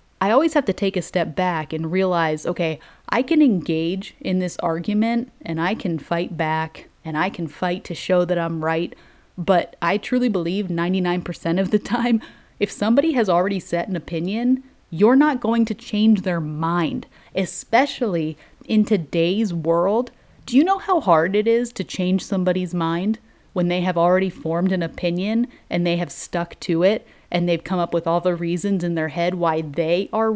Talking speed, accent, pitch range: 190 wpm, American, 170-225 Hz